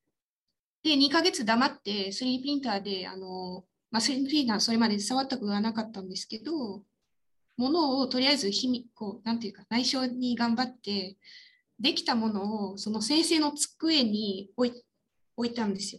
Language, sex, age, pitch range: Japanese, female, 20-39, 205-280 Hz